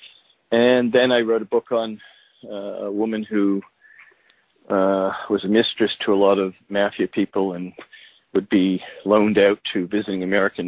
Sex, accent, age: male, American, 50-69